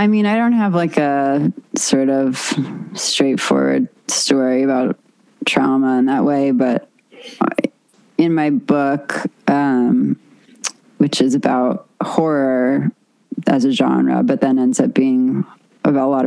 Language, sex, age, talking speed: English, female, 20-39, 130 wpm